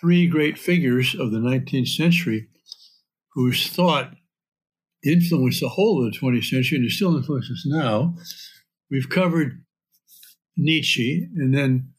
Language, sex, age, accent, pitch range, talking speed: English, male, 60-79, American, 125-165 Hz, 135 wpm